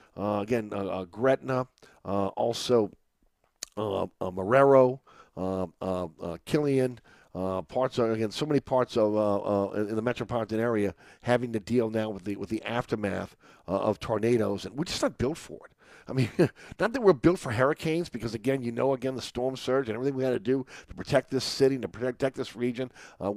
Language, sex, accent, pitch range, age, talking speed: English, male, American, 110-130 Hz, 50-69, 170 wpm